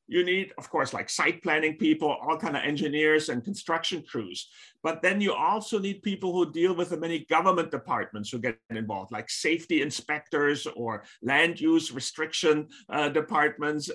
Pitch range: 150-185 Hz